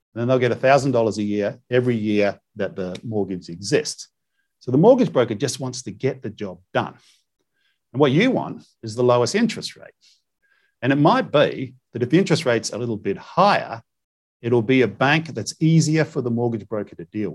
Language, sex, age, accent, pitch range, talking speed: English, male, 50-69, Australian, 105-135 Hz, 195 wpm